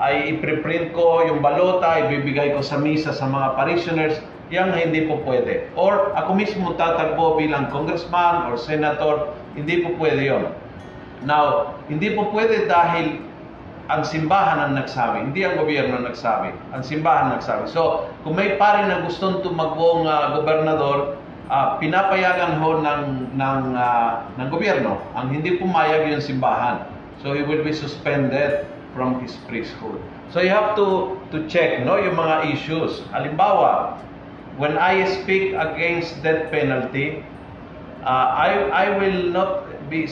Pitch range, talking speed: 145-170 Hz, 150 wpm